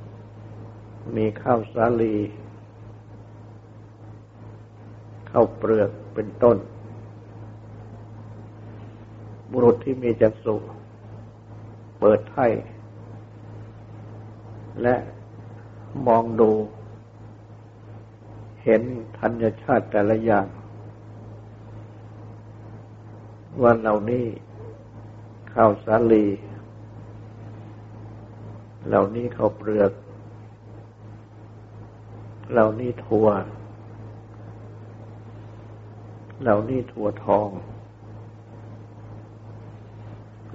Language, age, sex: Thai, 60-79, male